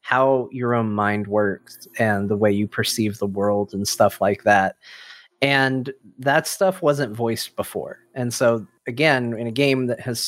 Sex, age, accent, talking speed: male, 30-49, American, 175 wpm